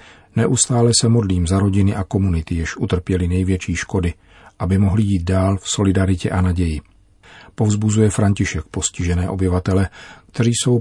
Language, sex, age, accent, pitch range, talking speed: Czech, male, 40-59, native, 90-105 Hz, 140 wpm